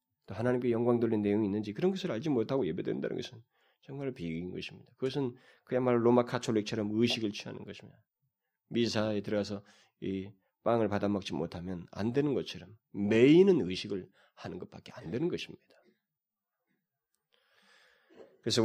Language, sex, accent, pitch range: Korean, male, native, 100-125 Hz